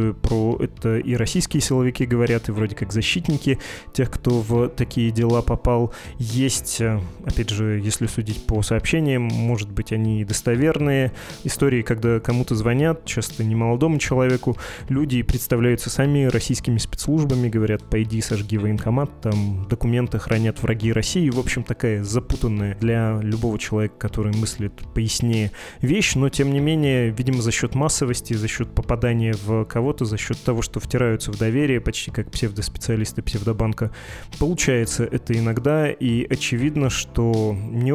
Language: Russian